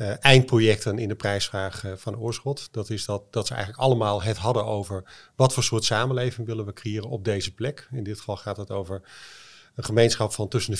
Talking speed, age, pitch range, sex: 215 wpm, 30-49, 105-125 Hz, male